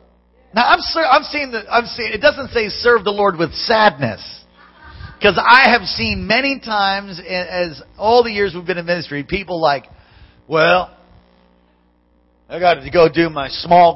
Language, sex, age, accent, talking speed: English, male, 50-69, American, 165 wpm